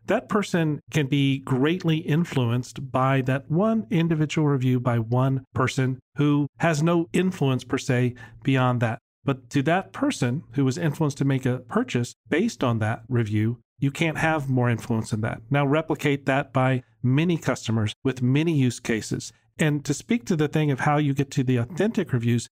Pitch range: 125-155 Hz